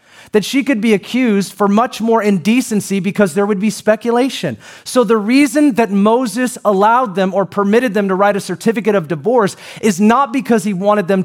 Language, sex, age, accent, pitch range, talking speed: English, male, 30-49, American, 190-240 Hz, 190 wpm